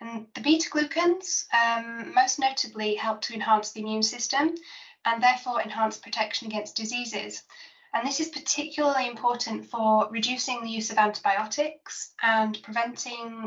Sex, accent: female, British